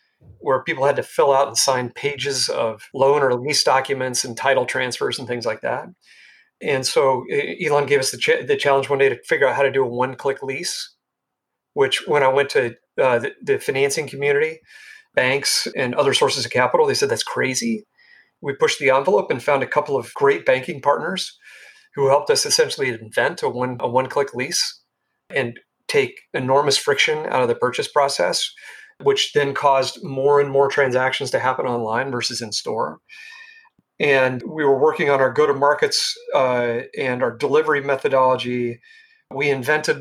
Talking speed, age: 175 wpm, 40-59